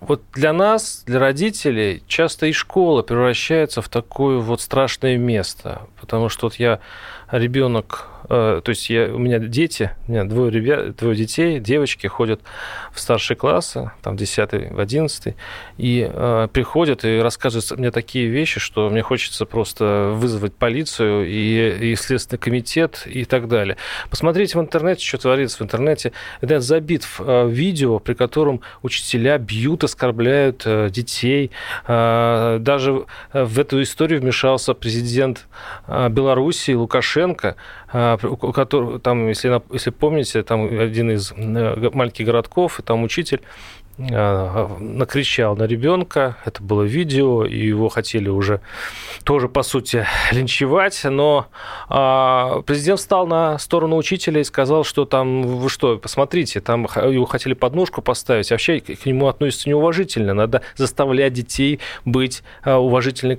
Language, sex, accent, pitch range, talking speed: Russian, male, native, 115-140 Hz, 135 wpm